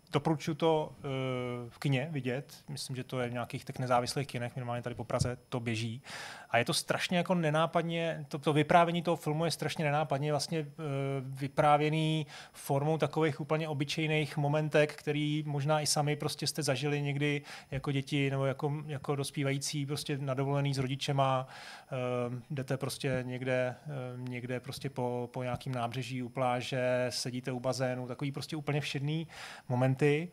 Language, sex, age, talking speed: Czech, male, 30-49, 160 wpm